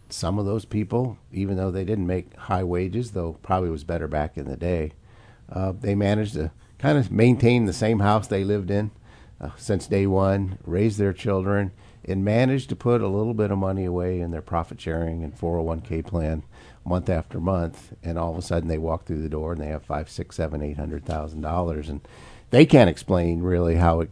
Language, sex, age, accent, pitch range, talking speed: English, male, 50-69, American, 85-100 Hz, 220 wpm